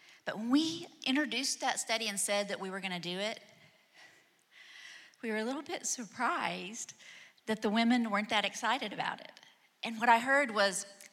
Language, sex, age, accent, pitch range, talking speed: English, female, 40-59, American, 180-230 Hz, 180 wpm